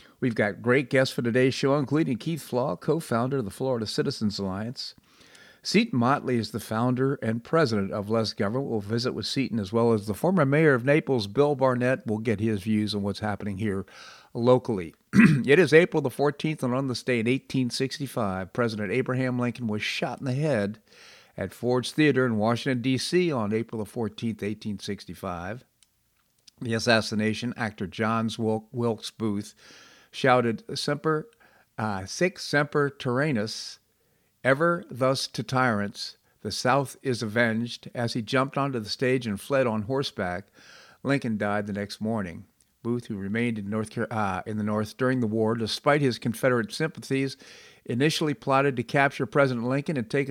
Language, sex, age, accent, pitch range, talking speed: English, male, 50-69, American, 110-135 Hz, 165 wpm